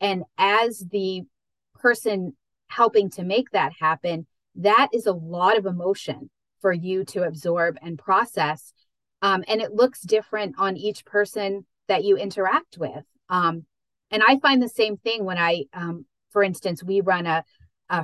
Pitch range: 165-200 Hz